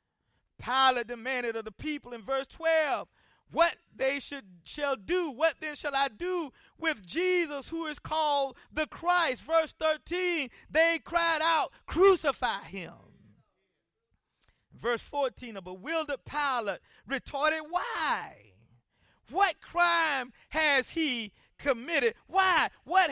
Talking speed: 120 wpm